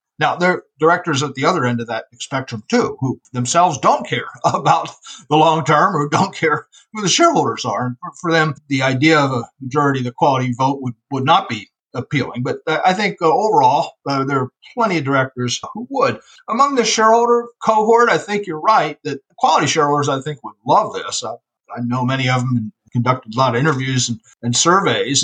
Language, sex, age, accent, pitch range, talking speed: English, male, 50-69, American, 130-165 Hz, 210 wpm